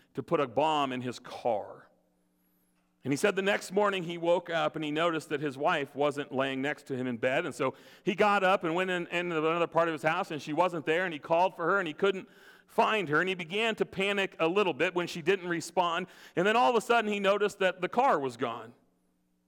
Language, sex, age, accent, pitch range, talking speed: English, male, 40-59, American, 125-195 Hz, 250 wpm